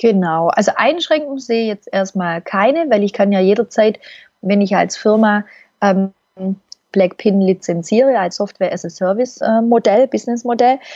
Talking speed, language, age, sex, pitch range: 125 wpm, German, 30-49, female, 185-225 Hz